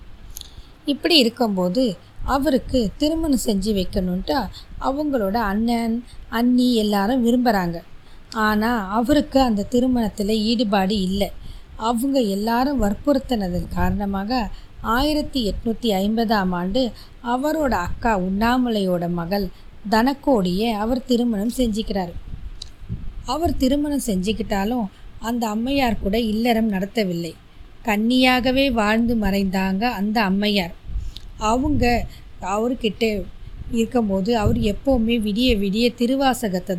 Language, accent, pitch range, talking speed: Tamil, native, 195-250 Hz, 90 wpm